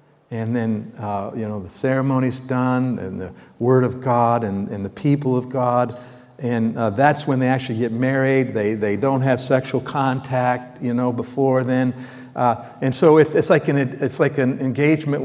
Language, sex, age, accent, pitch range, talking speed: English, male, 60-79, American, 125-155 Hz, 190 wpm